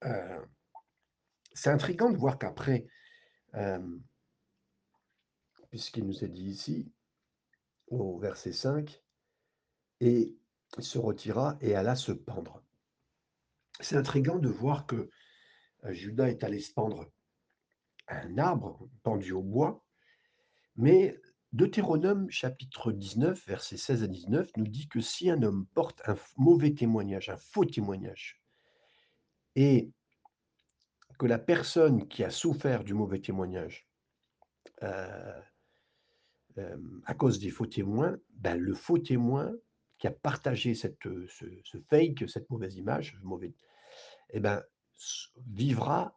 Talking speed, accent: 120 wpm, French